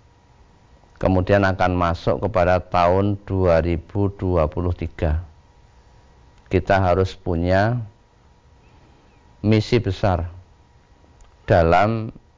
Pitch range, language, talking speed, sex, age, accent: 85-105 Hz, Indonesian, 60 wpm, male, 50-69, native